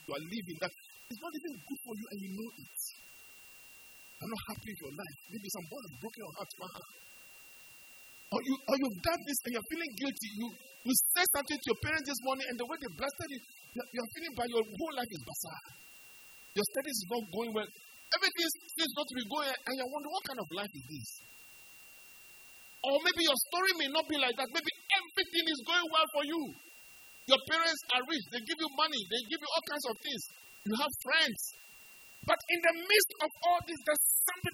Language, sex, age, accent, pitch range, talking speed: English, male, 50-69, Nigerian, 225-325 Hz, 210 wpm